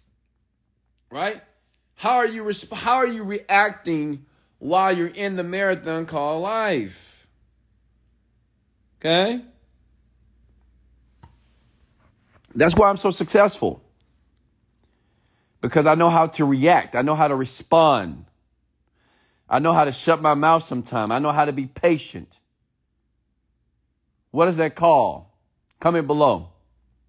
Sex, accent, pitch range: male, American, 125-200 Hz